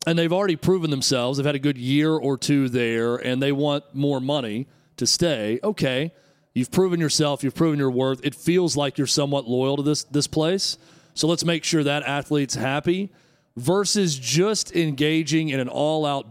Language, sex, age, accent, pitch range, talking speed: English, male, 40-59, American, 140-170 Hz, 190 wpm